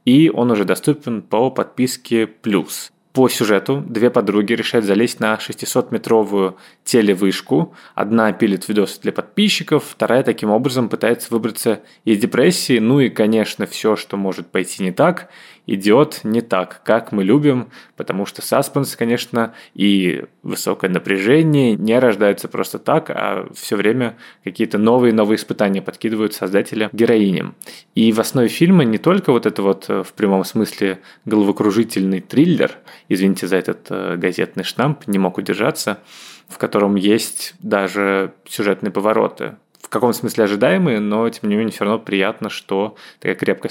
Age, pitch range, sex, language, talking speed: 20-39, 100-120 Hz, male, Russian, 145 wpm